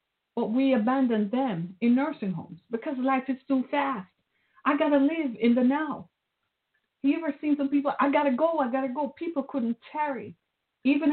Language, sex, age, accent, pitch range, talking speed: English, female, 50-69, American, 205-265 Hz, 195 wpm